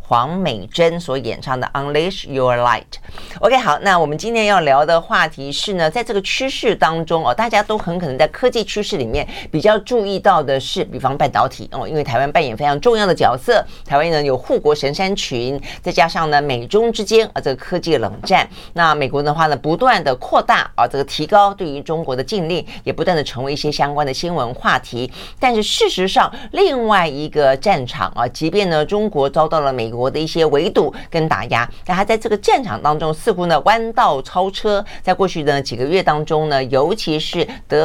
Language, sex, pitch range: Chinese, female, 135-195 Hz